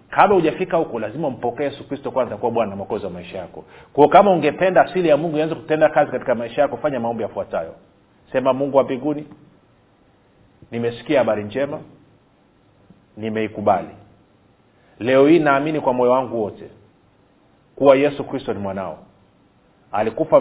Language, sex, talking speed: Swahili, male, 145 wpm